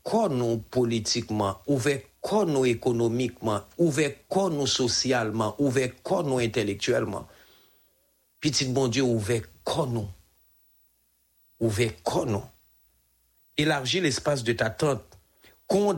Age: 50-69